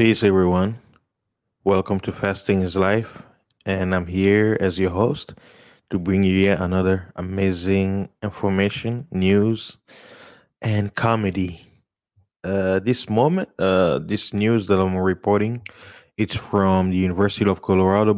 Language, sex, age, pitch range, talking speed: English, male, 20-39, 95-110 Hz, 125 wpm